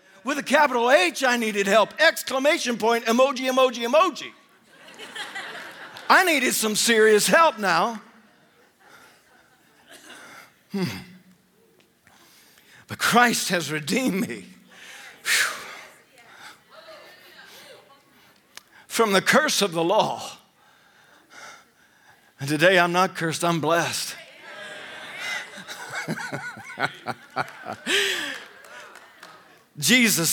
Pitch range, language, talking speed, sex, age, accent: 180-235 Hz, English, 75 wpm, male, 50-69, American